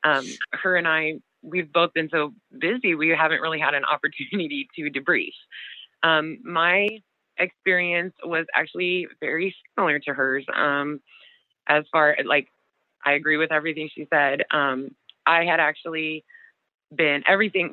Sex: female